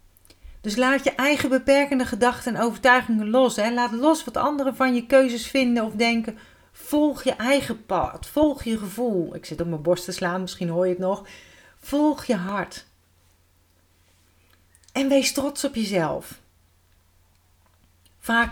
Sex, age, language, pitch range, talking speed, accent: female, 40-59, Dutch, 175-245 Hz, 155 wpm, Dutch